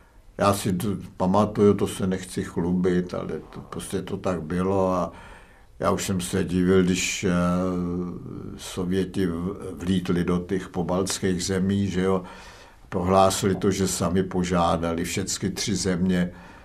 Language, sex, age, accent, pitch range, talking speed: Czech, male, 60-79, native, 90-95 Hz, 135 wpm